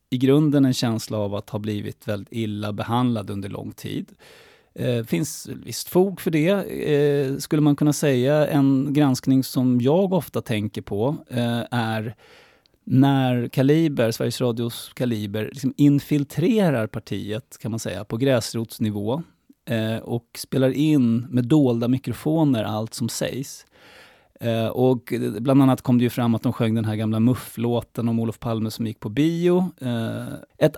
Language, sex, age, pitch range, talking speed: English, male, 30-49, 110-135 Hz, 140 wpm